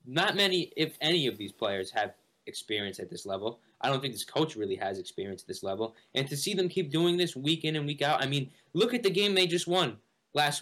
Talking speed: 255 wpm